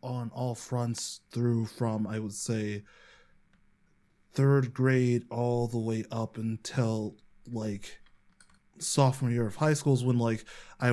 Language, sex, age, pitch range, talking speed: English, male, 20-39, 115-135 Hz, 130 wpm